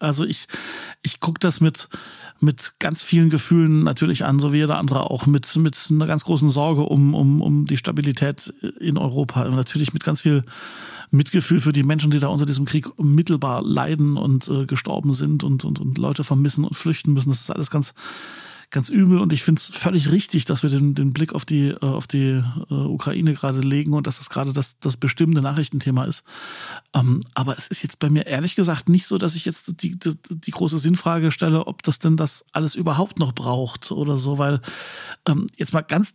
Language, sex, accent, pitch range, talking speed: German, male, German, 145-170 Hz, 210 wpm